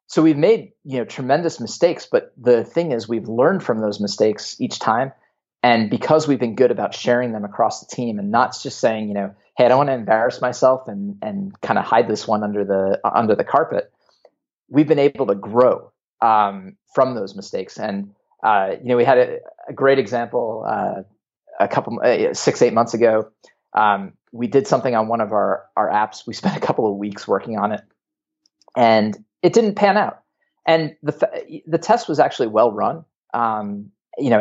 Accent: American